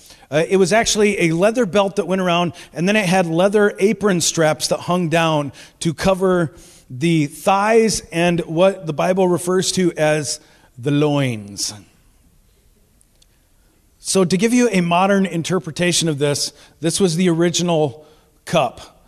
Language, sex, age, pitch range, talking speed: English, male, 40-59, 150-195 Hz, 150 wpm